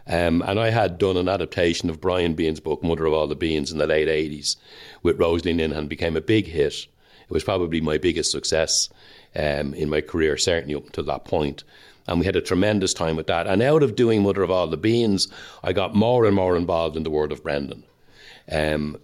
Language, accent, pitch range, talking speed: English, Irish, 75-95 Hz, 225 wpm